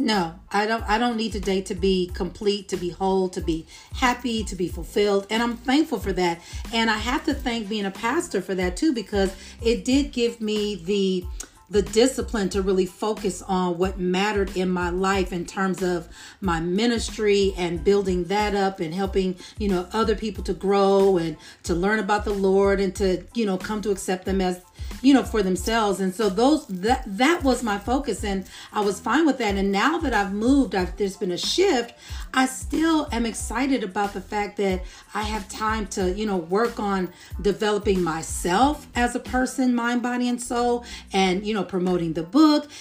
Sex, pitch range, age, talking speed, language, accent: female, 195-245 Hz, 40-59, 200 wpm, English, American